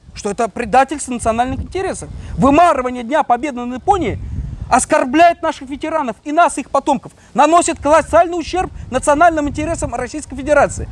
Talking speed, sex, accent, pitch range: 130 wpm, male, native, 240-300 Hz